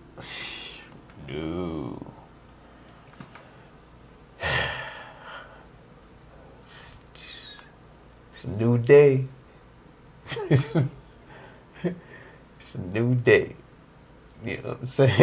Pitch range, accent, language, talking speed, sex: 100-135 Hz, American, English, 60 wpm, male